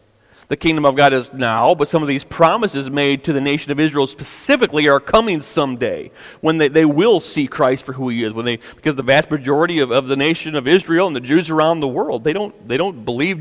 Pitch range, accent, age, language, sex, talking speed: 140-180 Hz, American, 40-59, English, male, 240 wpm